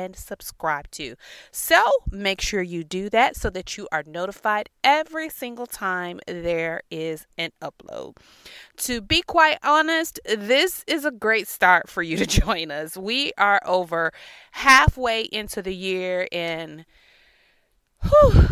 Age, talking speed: 30-49, 145 wpm